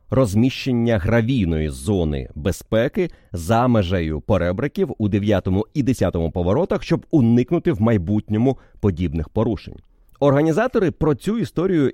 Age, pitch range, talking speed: 30-49, 105-150 Hz, 110 wpm